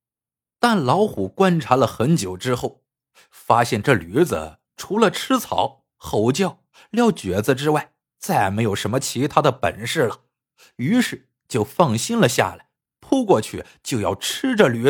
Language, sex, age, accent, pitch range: Chinese, male, 50-69, native, 125-185 Hz